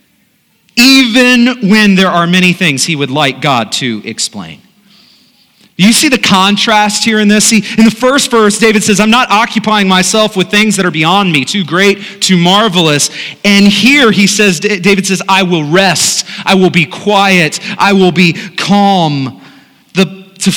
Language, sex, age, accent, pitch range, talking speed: English, male, 30-49, American, 175-210 Hz, 170 wpm